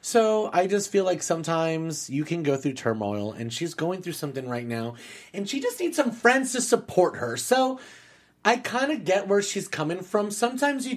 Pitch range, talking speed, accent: 135-195 Hz, 210 wpm, American